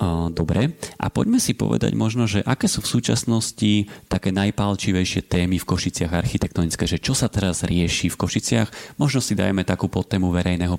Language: Slovak